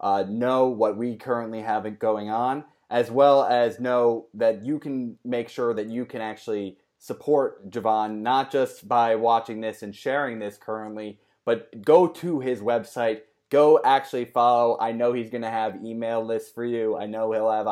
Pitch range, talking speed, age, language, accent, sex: 110-135 Hz, 180 wpm, 20-39, English, American, male